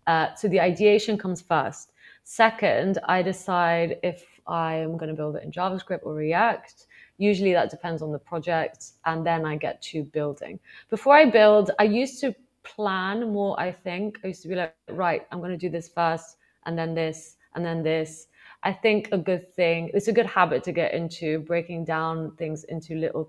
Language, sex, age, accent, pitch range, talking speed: English, female, 20-39, British, 160-185 Hz, 195 wpm